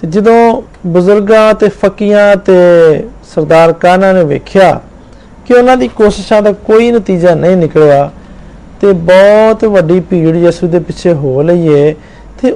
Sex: male